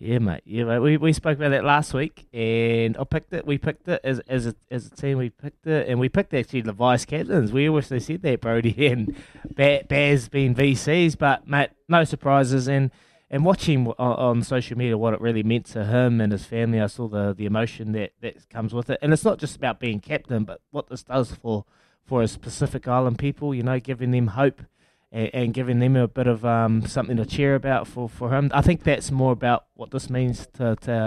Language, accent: English, Australian